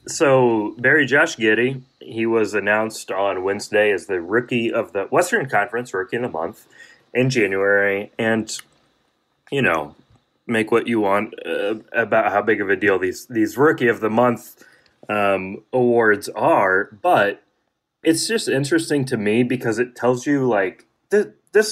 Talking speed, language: 160 wpm, English